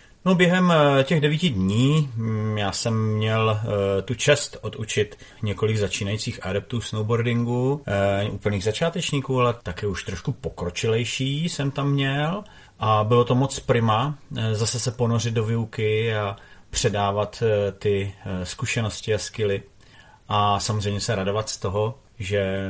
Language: Czech